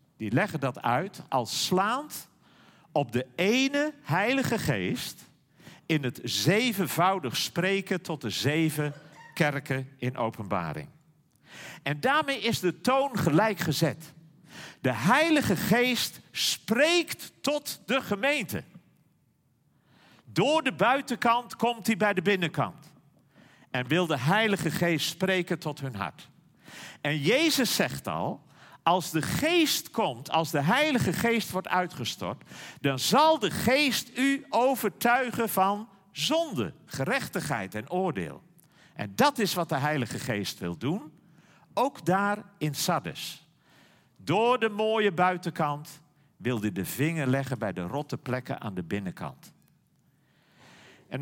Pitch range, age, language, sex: 145-215 Hz, 50-69, Dutch, male